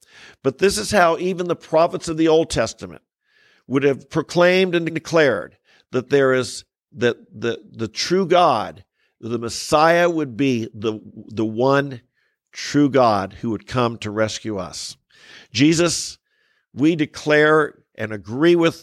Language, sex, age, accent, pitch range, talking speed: English, male, 50-69, American, 115-160 Hz, 145 wpm